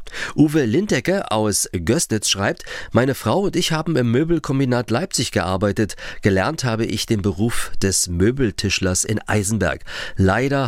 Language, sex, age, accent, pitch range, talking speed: German, male, 40-59, German, 100-130 Hz, 135 wpm